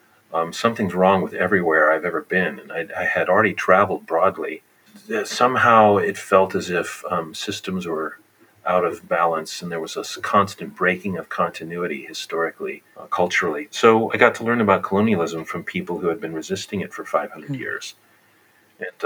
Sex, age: male, 40-59